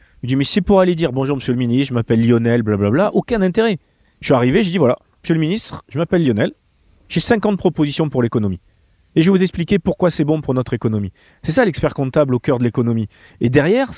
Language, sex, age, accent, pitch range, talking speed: French, male, 40-59, French, 120-180 Hz, 235 wpm